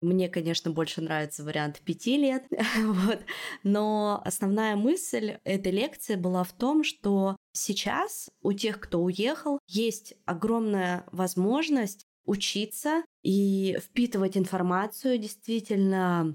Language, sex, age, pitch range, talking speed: Russian, female, 20-39, 165-205 Hz, 110 wpm